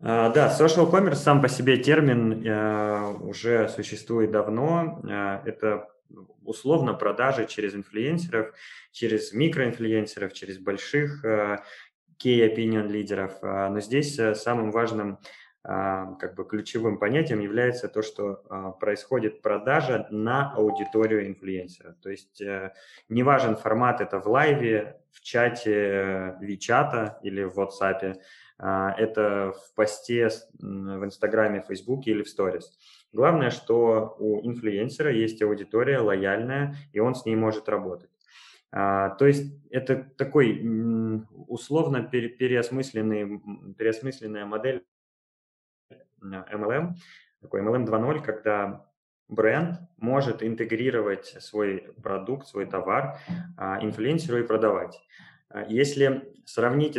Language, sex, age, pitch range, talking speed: Russian, male, 20-39, 100-125 Hz, 115 wpm